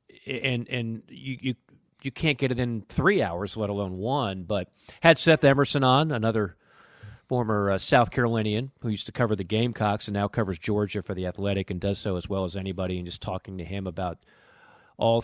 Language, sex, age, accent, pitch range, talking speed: English, male, 40-59, American, 95-115 Hz, 195 wpm